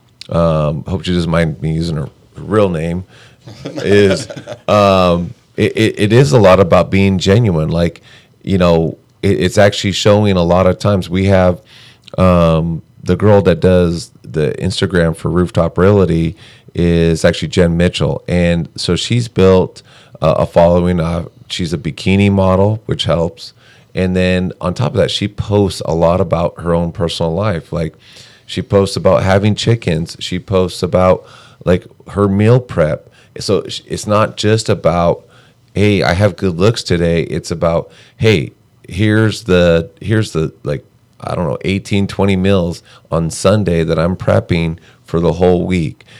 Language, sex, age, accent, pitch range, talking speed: English, male, 30-49, American, 85-105 Hz, 160 wpm